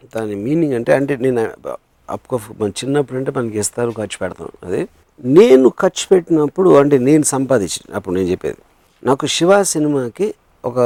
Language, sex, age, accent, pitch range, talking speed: Telugu, male, 50-69, native, 115-155 Hz, 145 wpm